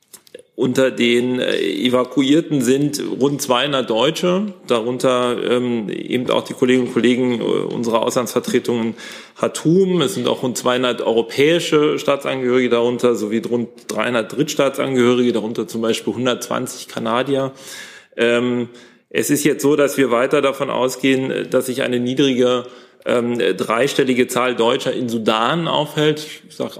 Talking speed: 125 wpm